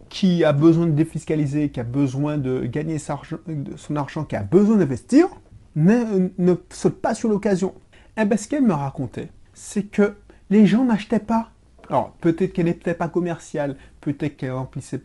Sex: male